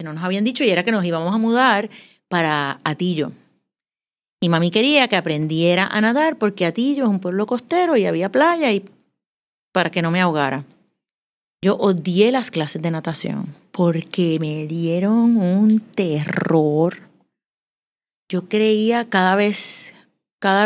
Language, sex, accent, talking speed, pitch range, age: Spanish, female, American, 150 wpm, 170-225 Hz, 30-49